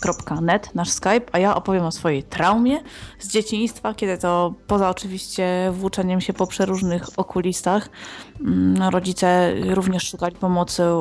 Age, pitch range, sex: 20-39, 180-220 Hz, female